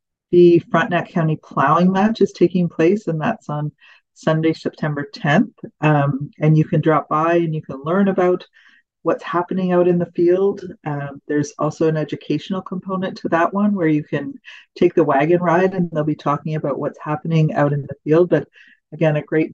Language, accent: English, American